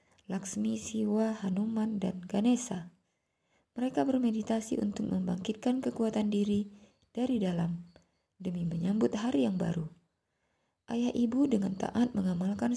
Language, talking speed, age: Indonesian, 110 wpm, 20-39